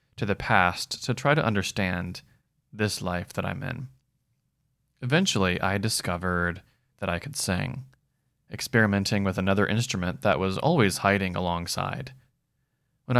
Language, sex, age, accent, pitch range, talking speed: English, male, 20-39, American, 100-135 Hz, 130 wpm